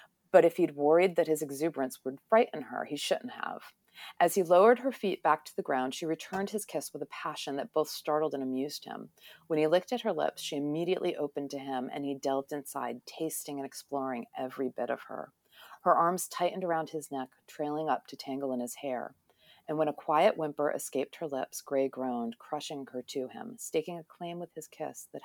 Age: 30-49